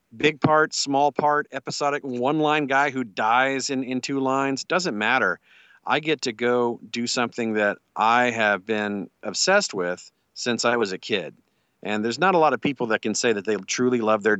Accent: American